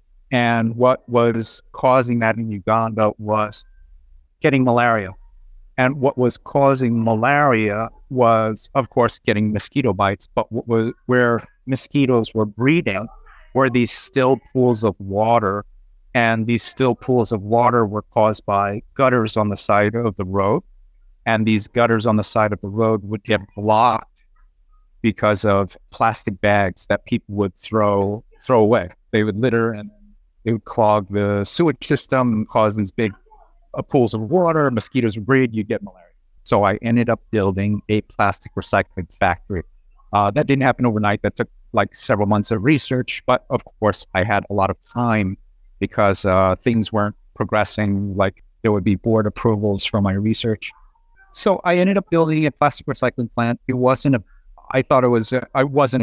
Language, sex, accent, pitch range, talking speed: English, male, American, 105-125 Hz, 165 wpm